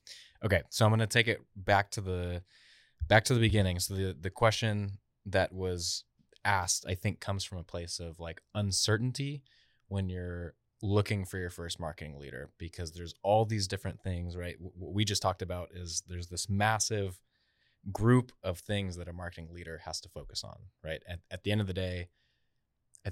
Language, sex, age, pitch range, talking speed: English, male, 20-39, 85-100 Hz, 195 wpm